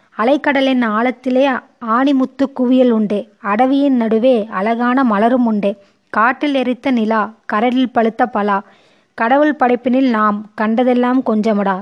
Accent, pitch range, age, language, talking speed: native, 220-260 Hz, 20-39, Tamil, 105 wpm